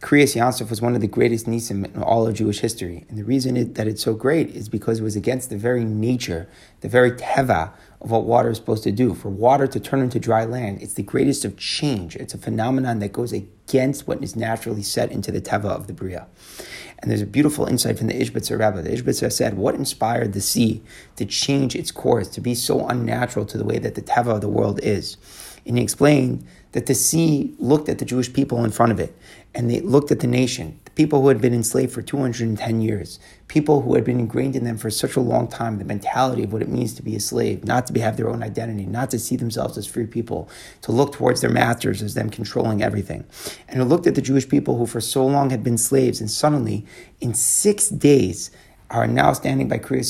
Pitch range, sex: 110-130 Hz, male